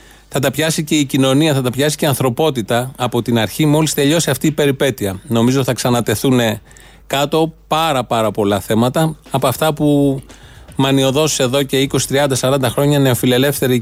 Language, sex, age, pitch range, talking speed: Greek, male, 30-49, 125-155 Hz, 160 wpm